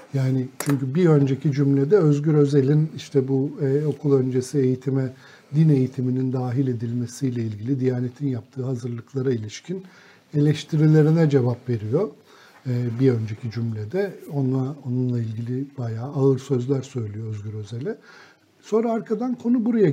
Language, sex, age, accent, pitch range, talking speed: Turkish, male, 50-69, native, 130-150 Hz, 125 wpm